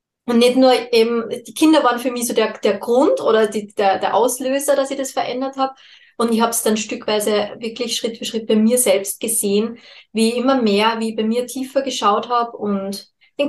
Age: 20-39